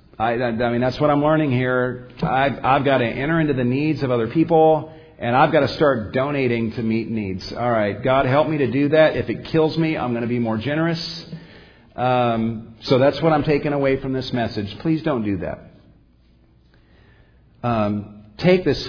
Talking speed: 200 wpm